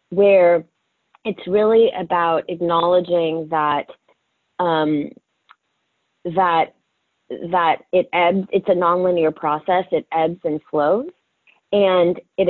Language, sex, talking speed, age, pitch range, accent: English, female, 100 wpm, 30-49, 150-180 Hz, American